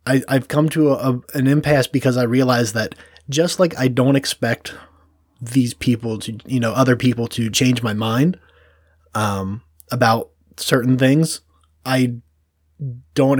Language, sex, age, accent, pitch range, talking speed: English, male, 20-39, American, 80-130 Hz, 150 wpm